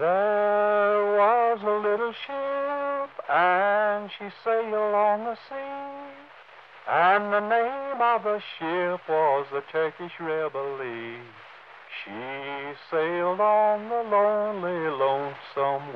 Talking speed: 100 wpm